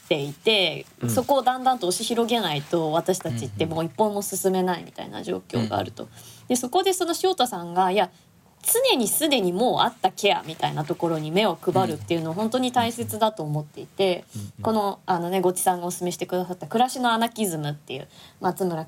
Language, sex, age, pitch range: Japanese, female, 20-39, 175-275 Hz